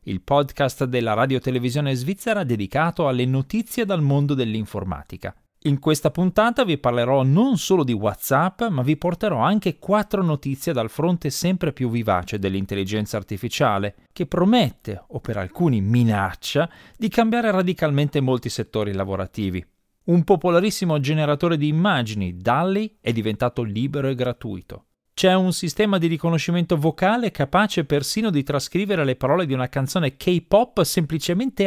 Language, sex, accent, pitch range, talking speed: Italian, male, native, 120-180 Hz, 140 wpm